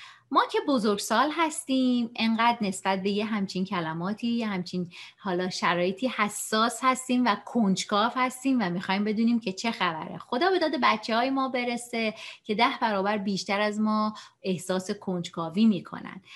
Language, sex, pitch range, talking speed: English, female, 185-245 Hz, 150 wpm